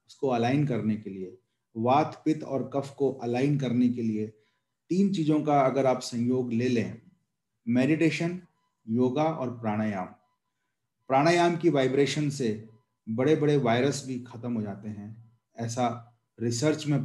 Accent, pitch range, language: Indian, 115-145 Hz, English